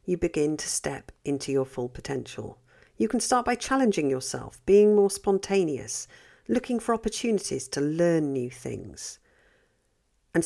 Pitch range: 135-190 Hz